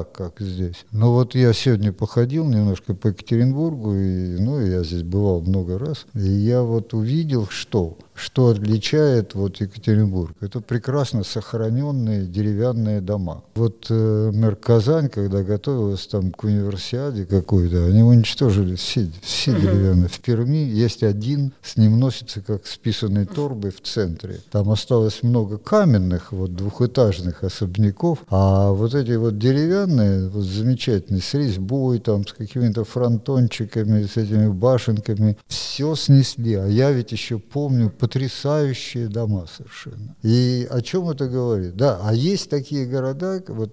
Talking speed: 140 wpm